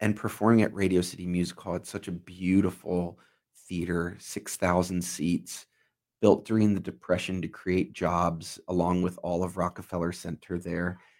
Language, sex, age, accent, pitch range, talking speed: English, male, 30-49, American, 90-100 Hz, 150 wpm